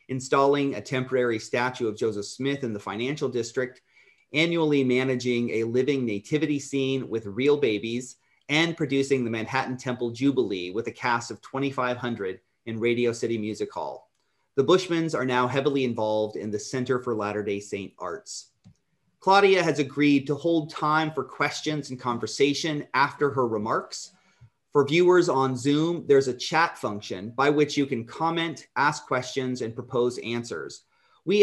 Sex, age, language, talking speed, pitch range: male, 30-49, English, 155 wpm, 120-150 Hz